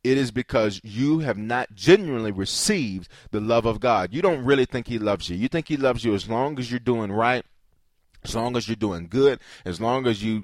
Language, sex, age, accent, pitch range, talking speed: English, male, 30-49, American, 100-130 Hz, 230 wpm